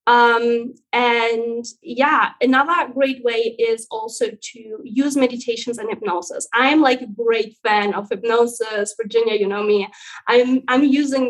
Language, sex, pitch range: English, female, 220-260 Hz